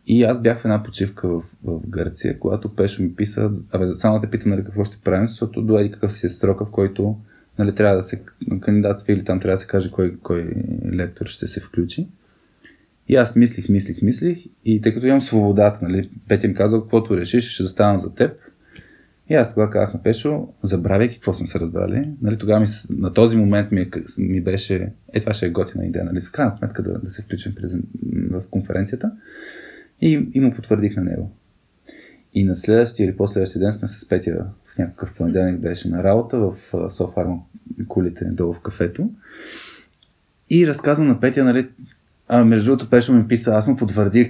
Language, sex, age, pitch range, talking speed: Bulgarian, male, 20-39, 95-120 Hz, 200 wpm